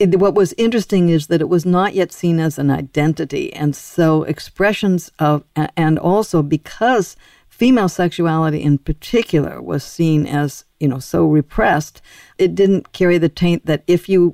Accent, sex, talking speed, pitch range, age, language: American, female, 165 wpm, 155-190 Hz, 60-79, English